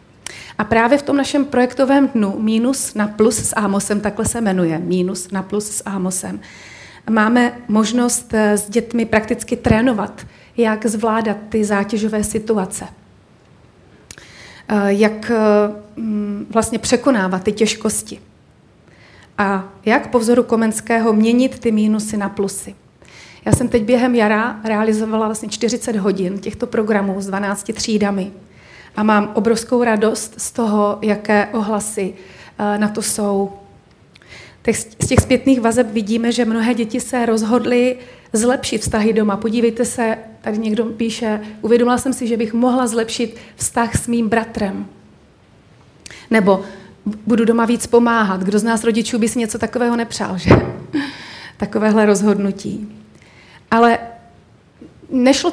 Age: 30-49